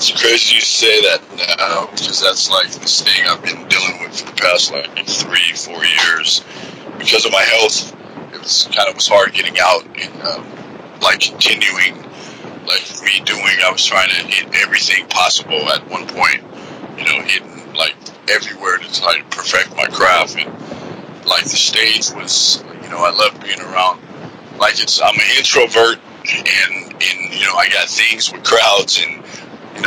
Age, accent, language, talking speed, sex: 50-69, American, English, 180 wpm, male